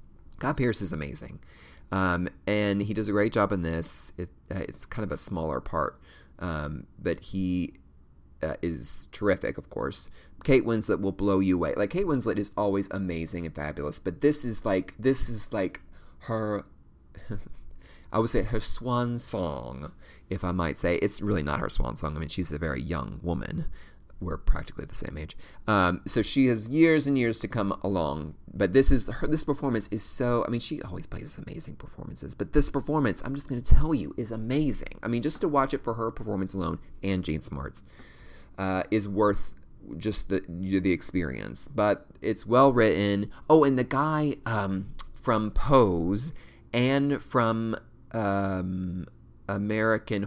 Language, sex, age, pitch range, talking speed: English, male, 30-49, 80-115 Hz, 180 wpm